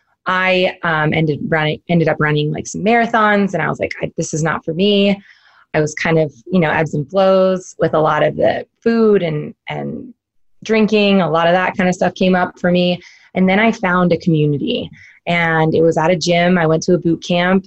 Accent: American